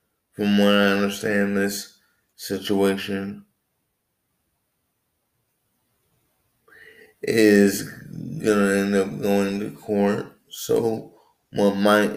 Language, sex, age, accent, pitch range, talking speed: English, male, 20-39, American, 100-110 Hz, 85 wpm